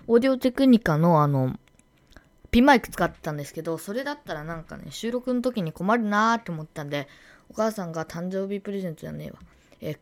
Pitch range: 160-245 Hz